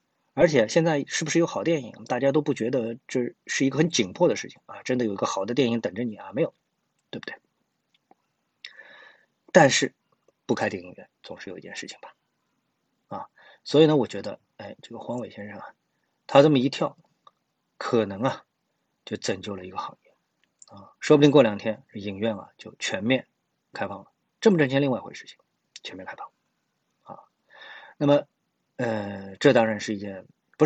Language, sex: Chinese, male